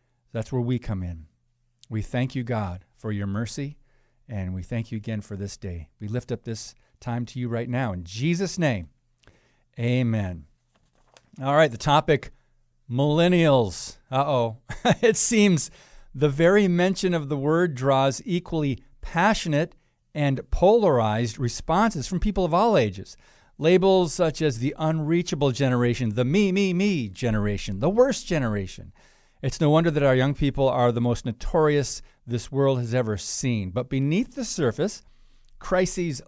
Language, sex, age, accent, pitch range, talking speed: English, male, 50-69, American, 120-165 Hz, 155 wpm